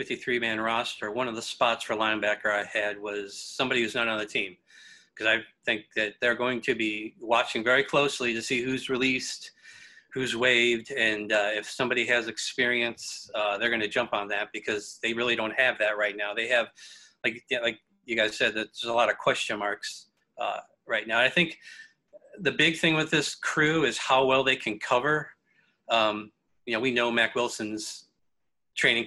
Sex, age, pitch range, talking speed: male, 40-59, 115-135 Hz, 190 wpm